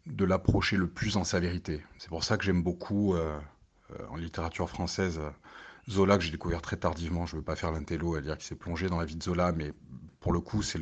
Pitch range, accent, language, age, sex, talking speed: 80-95 Hz, French, French, 40-59, male, 245 wpm